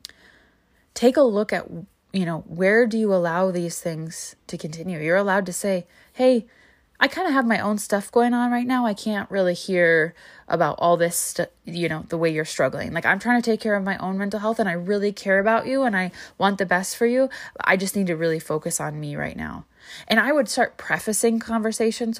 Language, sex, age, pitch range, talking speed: English, female, 20-39, 175-225 Hz, 225 wpm